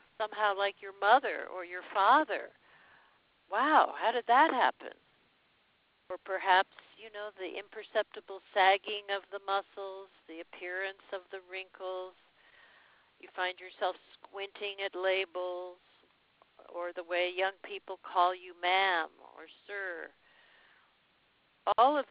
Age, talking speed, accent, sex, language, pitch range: 60-79, 120 wpm, American, female, English, 180-215 Hz